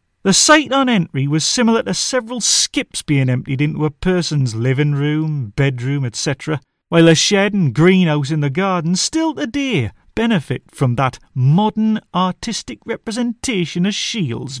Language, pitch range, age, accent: English, 135-185 Hz, 40-59, British